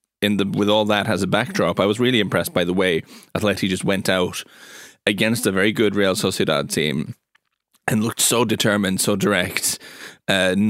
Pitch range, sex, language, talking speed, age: 95-120 Hz, male, English, 185 wpm, 10-29